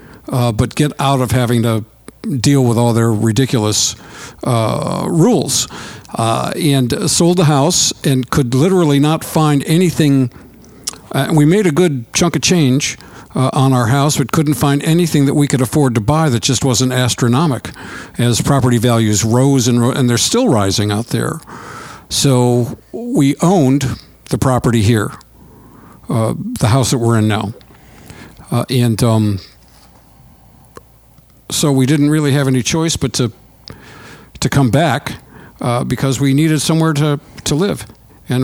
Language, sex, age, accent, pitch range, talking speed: English, male, 60-79, American, 120-150 Hz, 155 wpm